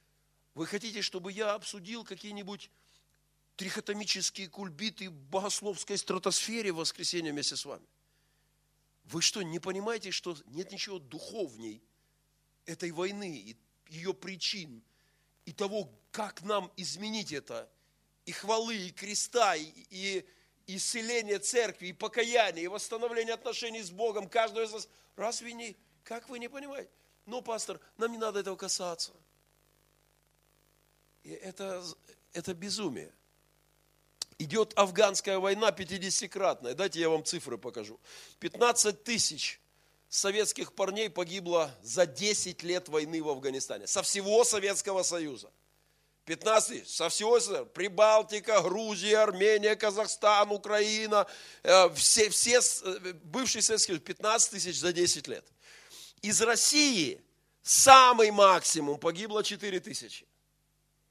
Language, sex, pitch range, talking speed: Russian, male, 175-215 Hz, 115 wpm